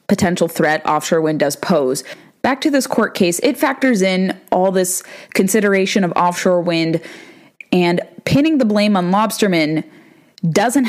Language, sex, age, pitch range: English, female, 20-39, 170-215 Hz